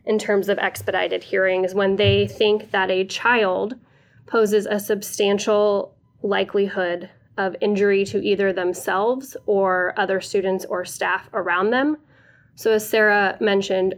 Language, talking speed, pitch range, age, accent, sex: English, 135 wpm, 185-215 Hz, 10-29, American, female